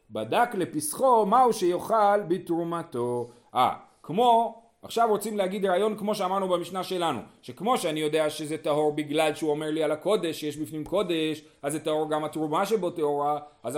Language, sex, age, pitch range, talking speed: Hebrew, male, 30-49, 155-220 Hz, 160 wpm